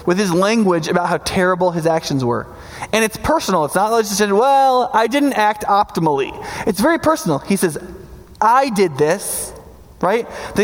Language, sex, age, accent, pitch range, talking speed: English, male, 20-39, American, 180-235 Hz, 180 wpm